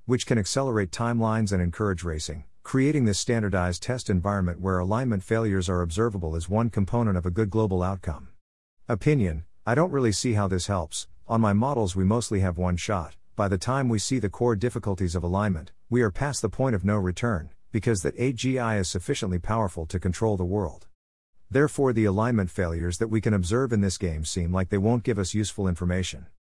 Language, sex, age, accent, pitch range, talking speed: English, male, 50-69, American, 90-115 Hz, 195 wpm